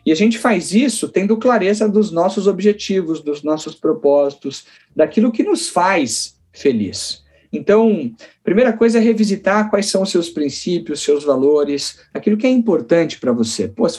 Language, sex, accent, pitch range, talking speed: Portuguese, male, Brazilian, 155-215 Hz, 165 wpm